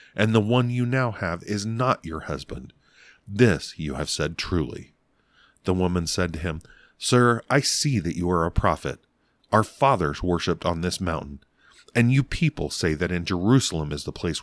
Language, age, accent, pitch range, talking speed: English, 40-59, American, 80-115 Hz, 185 wpm